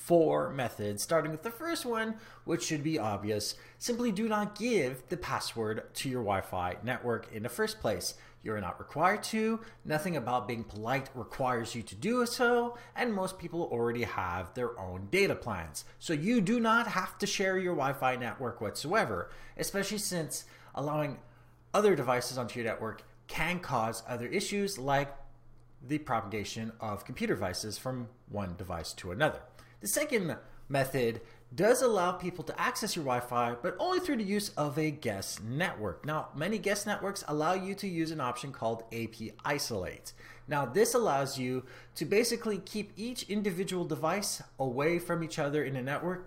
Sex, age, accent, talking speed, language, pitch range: male, 30-49, American, 170 wpm, English, 115-190 Hz